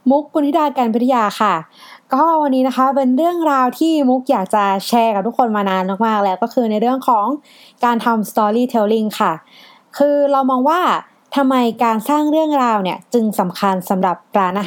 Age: 20-39